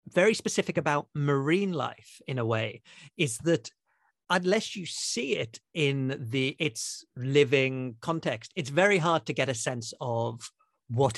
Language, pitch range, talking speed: English, 130-165 Hz, 150 wpm